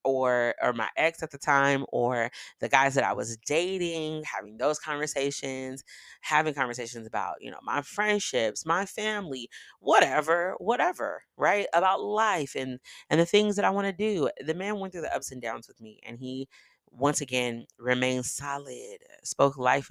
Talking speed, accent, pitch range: 175 wpm, American, 120-150 Hz